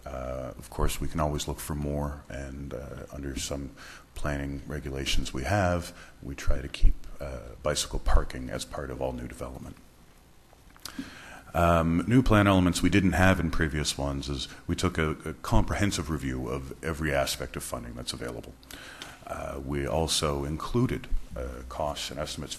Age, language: 40-59, English